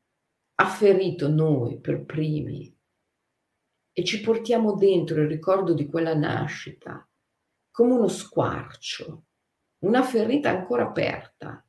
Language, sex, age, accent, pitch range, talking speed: Italian, female, 50-69, native, 160-230 Hz, 110 wpm